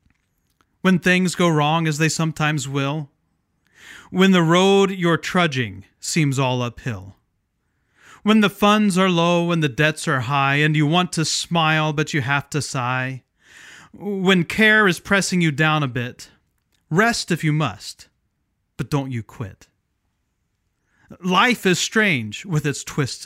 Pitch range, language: 130-195 Hz, English